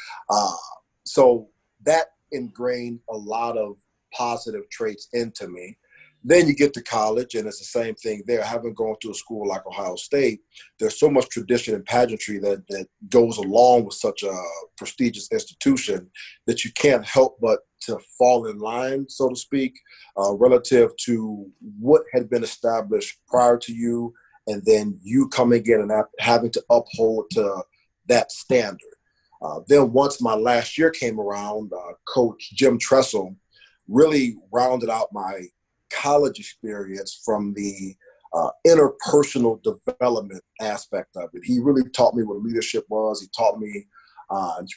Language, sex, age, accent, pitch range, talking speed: English, male, 40-59, American, 110-160 Hz, 155 wpm